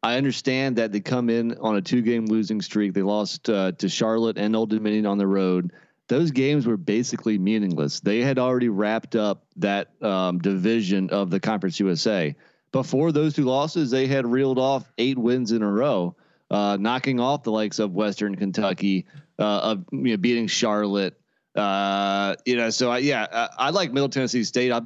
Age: 30-49